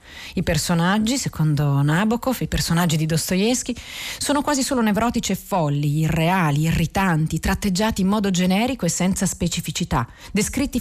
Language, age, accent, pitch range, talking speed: Italian, 40-59, native, 160-205 Hz, 135 wpm